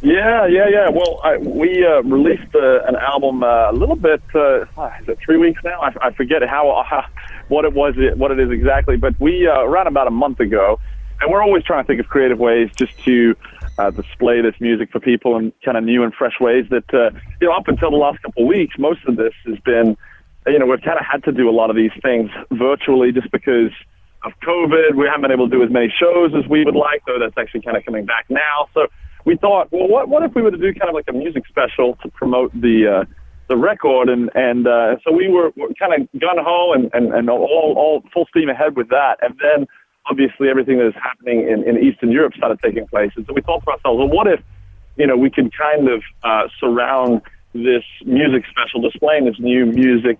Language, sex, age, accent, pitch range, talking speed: English, male, 40-59, American, 115-155 Hz, 245 wpm